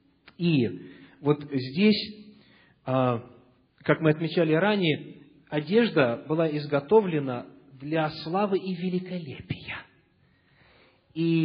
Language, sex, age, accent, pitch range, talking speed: Russian, male, 40-59, native, 130-175 Hz, 80 wpm